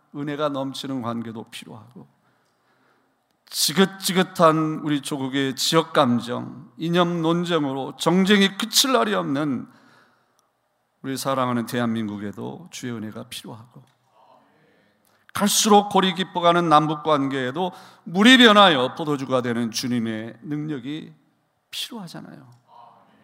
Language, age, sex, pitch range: Korean, 40-59, male, 125-185 Hz